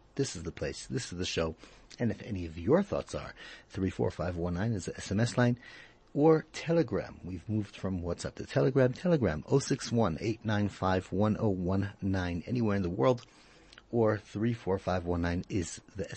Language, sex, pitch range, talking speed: English, male, 90-115 Hz, 135 wpm